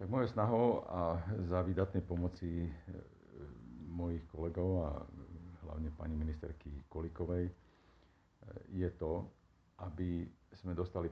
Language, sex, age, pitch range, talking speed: Slovak, male, 50-69, 80-90 Hz, 105 wpm